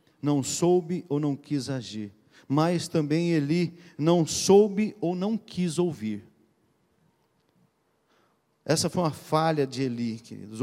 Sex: male